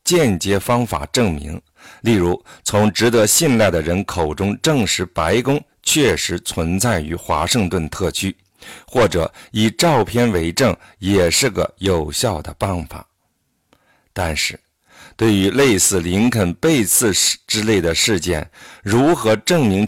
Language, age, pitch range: Chinese, 50-69, 85-115 Hz